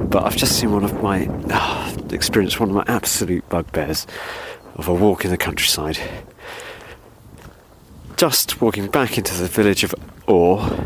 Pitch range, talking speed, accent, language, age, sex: 90-115 Hz, 160 wpm, British, English, 40-59, male